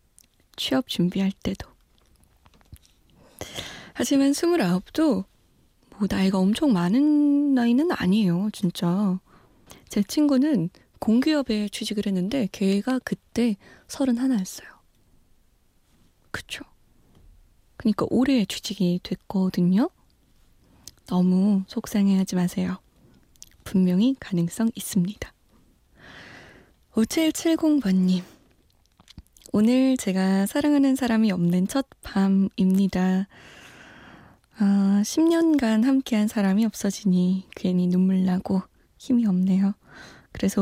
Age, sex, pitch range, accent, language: 20-39, female, 185-230 Hz, native, Korean